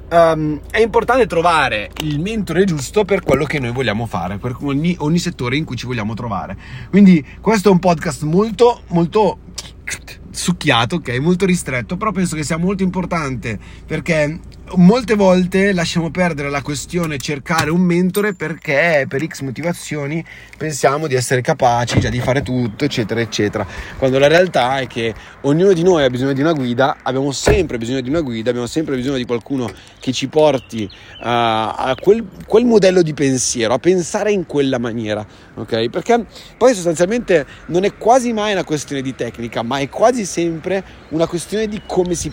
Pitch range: 120-175 Hz